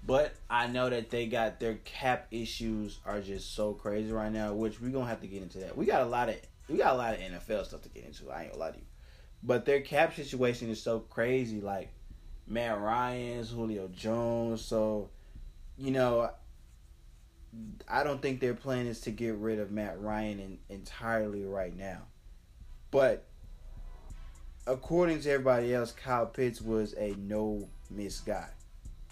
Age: 20-39